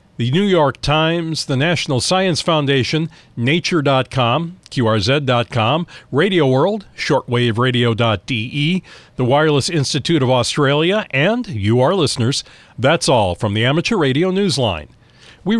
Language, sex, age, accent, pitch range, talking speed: English, male, 40-59, American, 125-170 Hz, 115 wpm